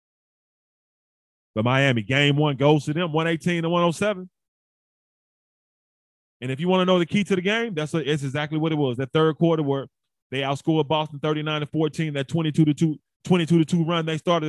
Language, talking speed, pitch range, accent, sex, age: English, 180 wpm, 100-165 Hz, American, male, 20-39